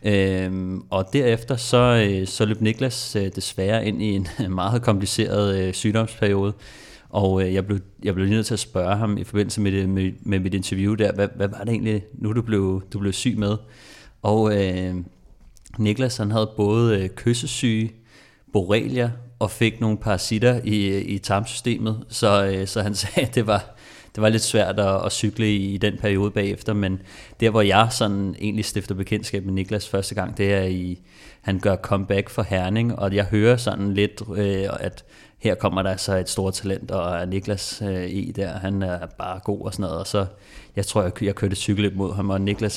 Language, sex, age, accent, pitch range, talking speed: Danish, male, 30-49, native, 95-110 Hz, 195 wpm